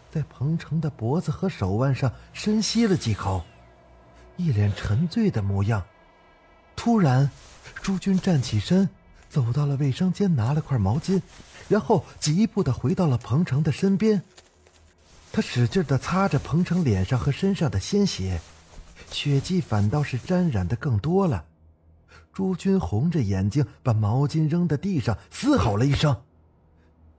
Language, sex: Chinese, male